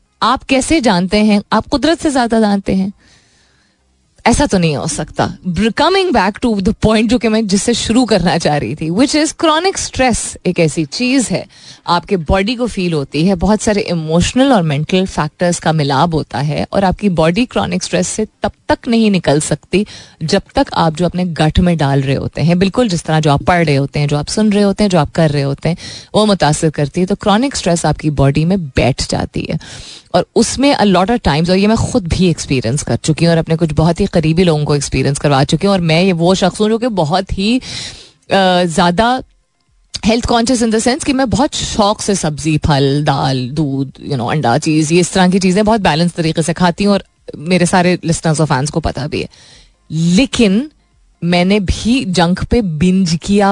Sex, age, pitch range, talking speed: female, 20-39, 160-215 Hz, 215 wpm